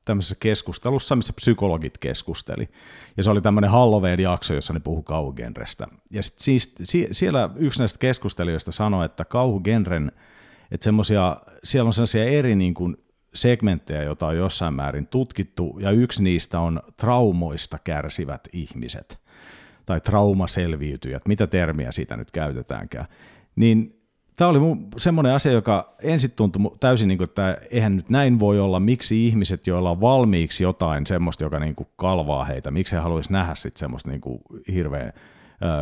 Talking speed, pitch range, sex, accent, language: 145 wpm, 85-115 Hz, male, native, Finnish